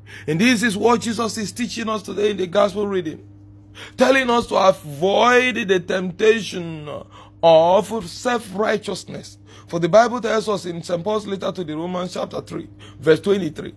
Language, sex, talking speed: English, male, 155 wpm